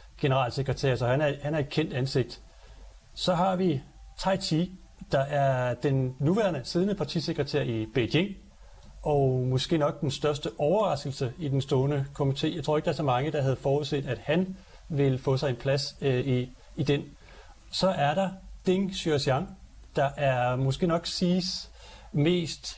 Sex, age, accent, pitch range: male, 40-59, native, 135-160 Hz